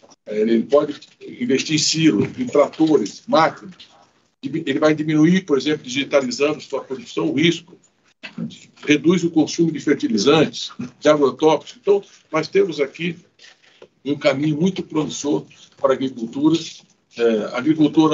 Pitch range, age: 145-205 Hz, 60-79